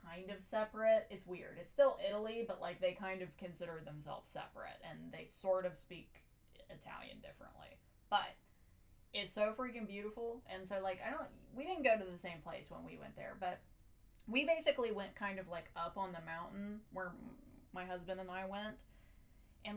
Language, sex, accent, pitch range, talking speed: English, female, American, 175-235 Hz, 190 wpm